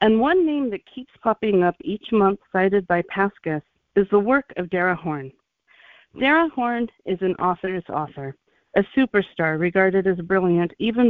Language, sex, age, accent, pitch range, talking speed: English, female, 50-69, American, 160-215 Hz, 160 wpm